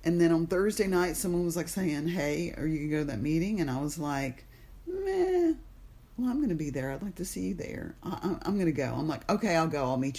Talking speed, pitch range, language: 270 wpm, 145-180 Hz, English